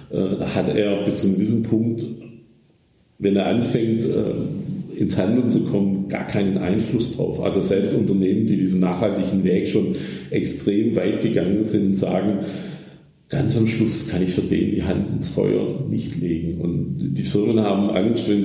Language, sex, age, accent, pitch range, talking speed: German, male, 50-69, German, 90-110 Hz, 165 wpm